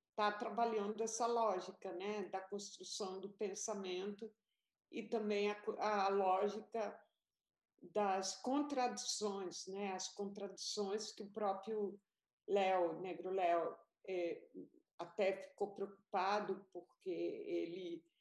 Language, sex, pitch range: Portuguese, female, 200-250 Hz